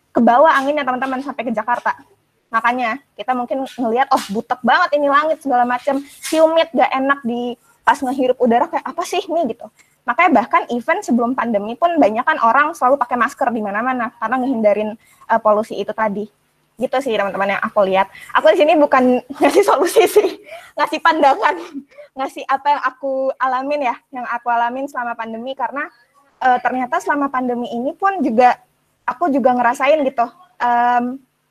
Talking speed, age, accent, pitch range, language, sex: 165 wpm, 20-39, native, 235-290 Hz, Indonesian, female